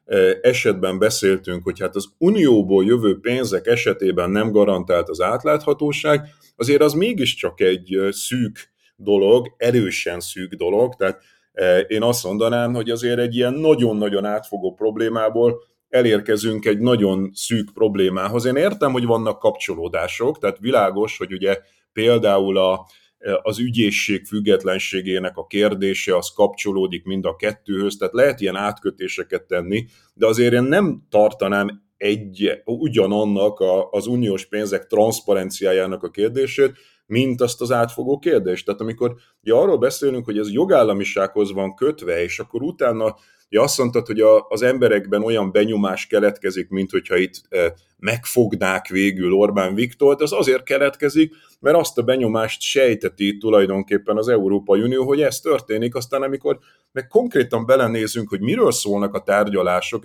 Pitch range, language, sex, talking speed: 100-140 Hz, Hungarian, male, 135 wpm